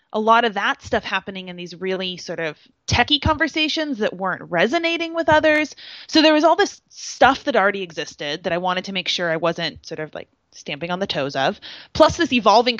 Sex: female